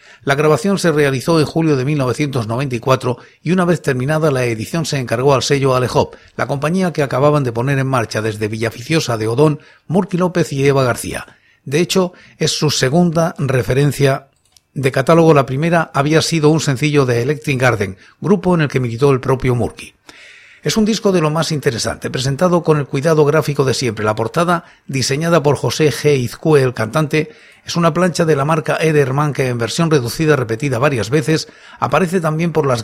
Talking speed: 185 wpm